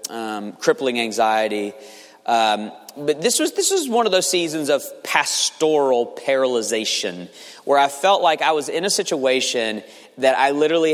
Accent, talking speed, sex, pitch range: American, 155 wpm, male, 125-175 Hz